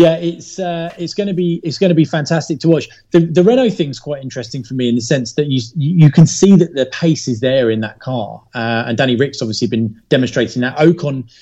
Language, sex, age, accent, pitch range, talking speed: English, male, 30-49, British, 120-150 Hz, 235 wpm